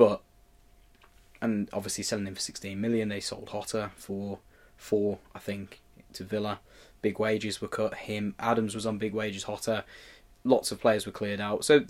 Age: 10-29